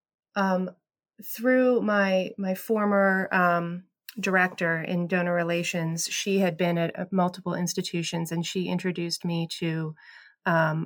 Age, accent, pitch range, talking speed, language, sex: 30-49, American, 175-210 Hz, 120 wpm, English, female